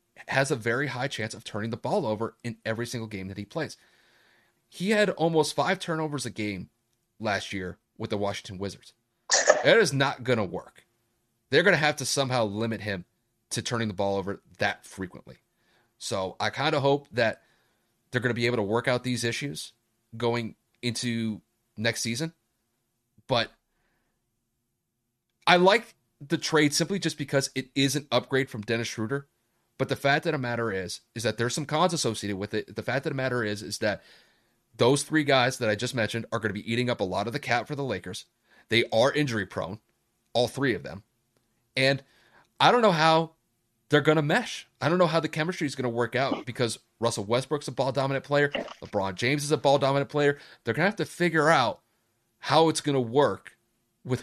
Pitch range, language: 115-145 Hz, English